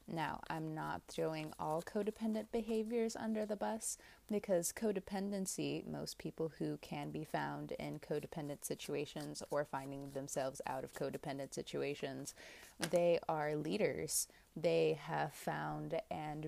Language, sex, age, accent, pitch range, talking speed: English, female, 20-39, American, 145-175 Hz, 125 wpm